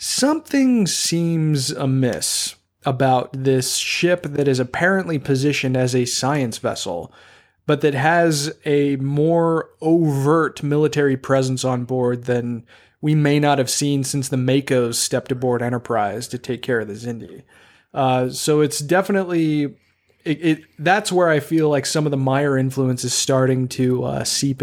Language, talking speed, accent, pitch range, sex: English, 155 wpm, American, 130-150 Hz, male